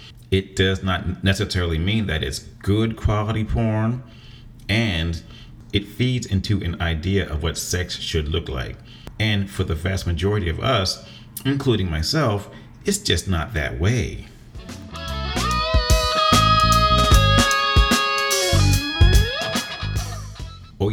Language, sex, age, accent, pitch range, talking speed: English, male, 40-59, American, 85-110 Hz, 105 wpm